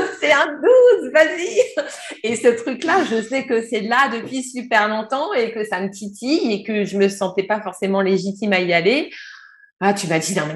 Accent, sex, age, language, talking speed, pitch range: French, female, 30-49, French, 210 wpm, 185-240 Hz